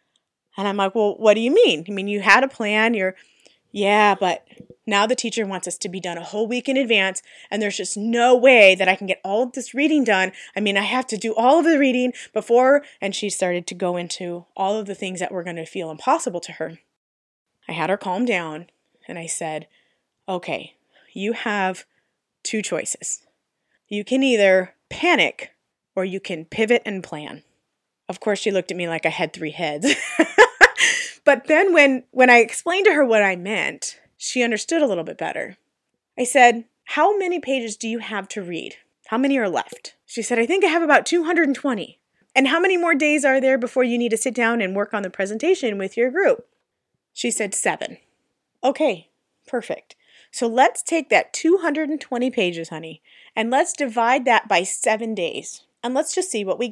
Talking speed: 205 wpm